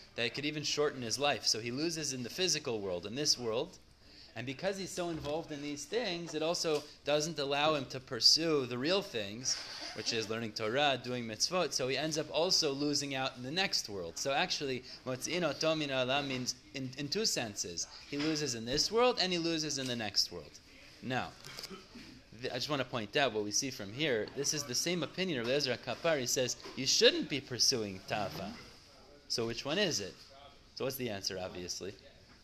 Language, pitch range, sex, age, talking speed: English, 125-155 Hz, male, 20-39, 200 wpm